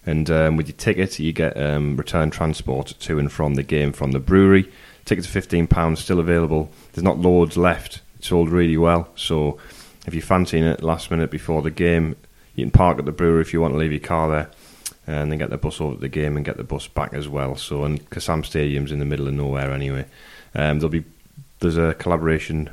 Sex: male